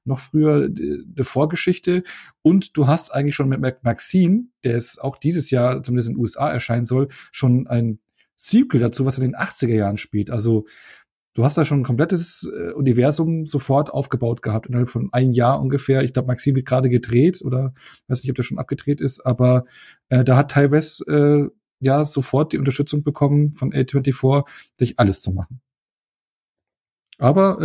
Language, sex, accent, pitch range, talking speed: German, male, German, 120-145 Hz, 180 wpm